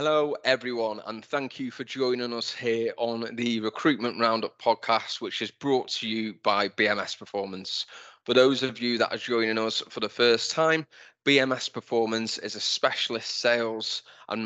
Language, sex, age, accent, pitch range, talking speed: English, male, 20-39, British, 110-125 Hz, 170 wpm